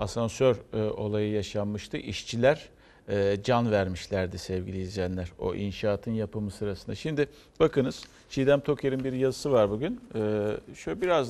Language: Turkish